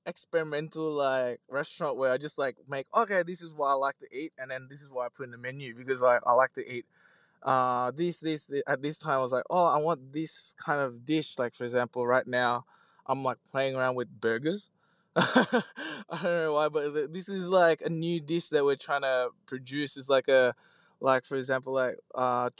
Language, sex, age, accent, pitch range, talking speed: English, male, 20-39, Australian, 125-155 Hz, 225 wpm